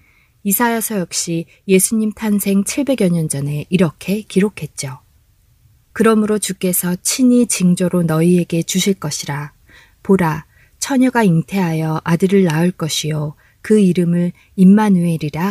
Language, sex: Korean, female